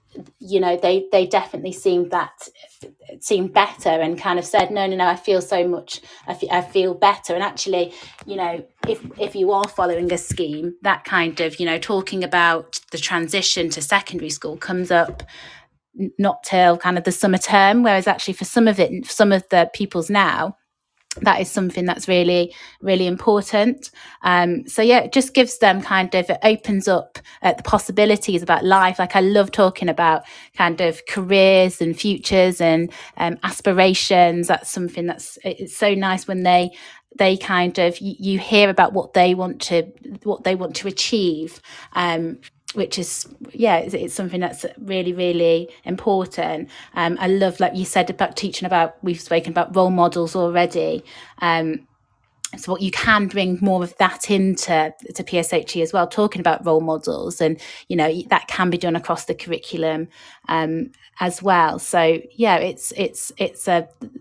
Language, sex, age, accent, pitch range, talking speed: English, female, 30-49, British, 170-195 Hz, 180 wpm